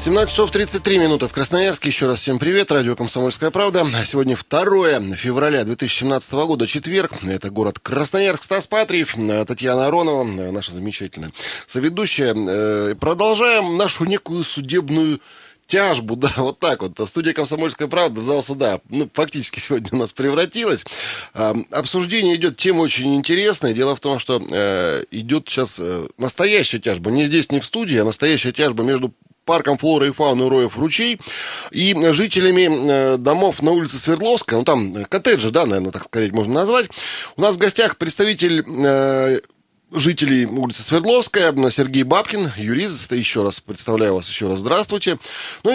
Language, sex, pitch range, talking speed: Russian, male, 125-175 Hz, 150 wpm